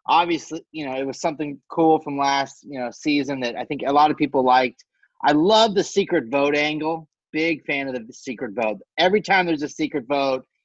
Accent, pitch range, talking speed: American, 130-175 Hz, 215 wpm